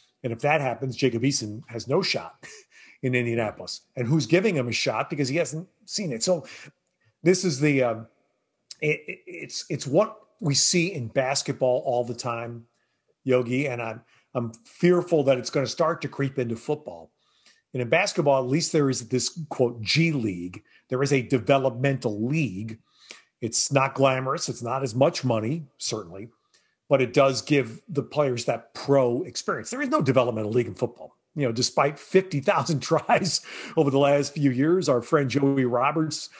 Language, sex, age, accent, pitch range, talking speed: English, male, 40-59, American, 125-160 Hz, 180 wpm